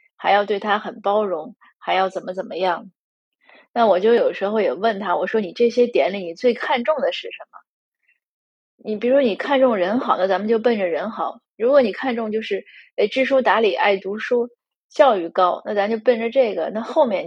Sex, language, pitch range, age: female, Chinese, 205-270 Hz, 20-39